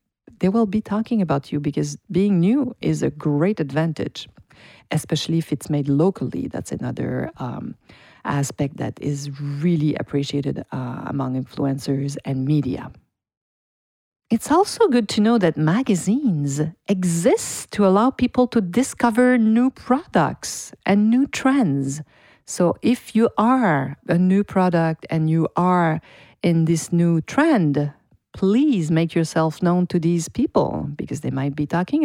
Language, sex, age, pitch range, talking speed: English, female, 50-69, 145-205 Hz, 140 wpm